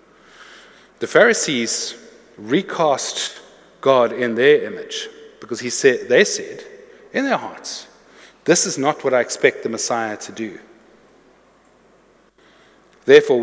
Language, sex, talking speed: English, male, 105 wpm